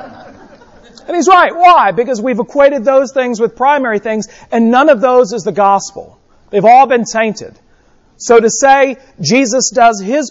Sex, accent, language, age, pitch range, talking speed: male, American, English, 40-59, 210-260 Hz, 170 wpm